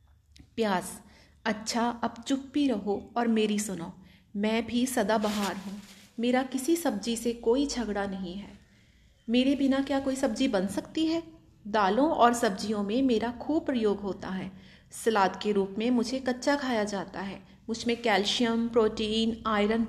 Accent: native